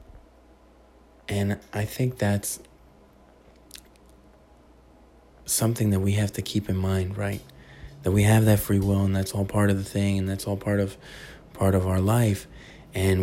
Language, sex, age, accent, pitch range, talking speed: English, male, 20-39, American, 100-160 Hz, 165 wpm